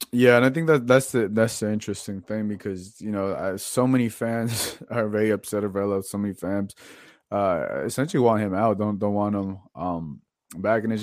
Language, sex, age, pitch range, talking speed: English, male, 20-39, 95-115 Hz, 200 wpm